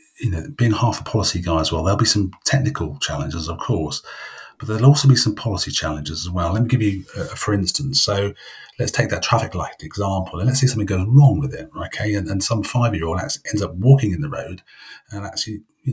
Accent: British